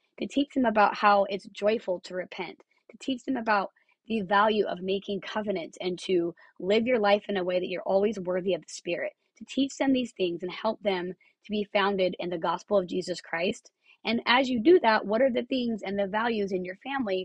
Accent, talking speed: American, 225 wpm